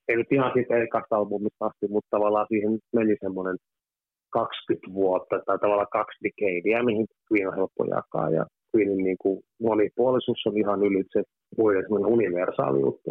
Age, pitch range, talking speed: 30-49, 100-115 Hz, 150 wpm